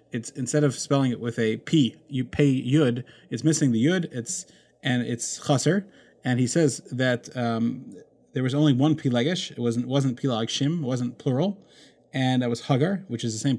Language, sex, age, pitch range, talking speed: English, male, 30-49, 115-145 Hz, 195 wpm